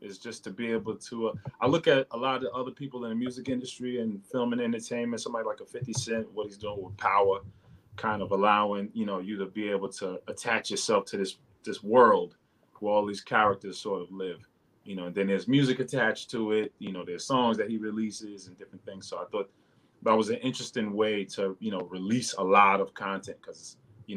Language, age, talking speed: English, 30-49, 235 wpm